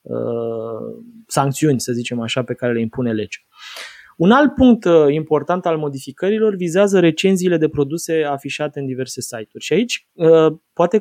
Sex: male